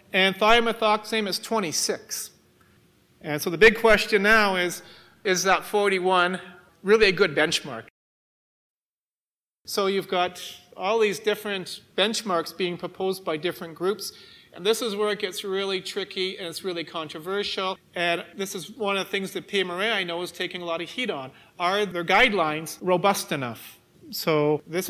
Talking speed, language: 160 wpm, English